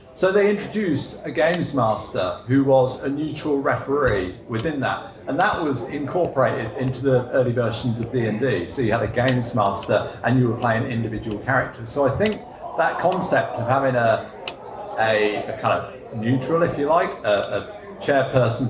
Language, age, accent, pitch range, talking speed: English, 50-69, British, 115-155 Hz, 175 wpm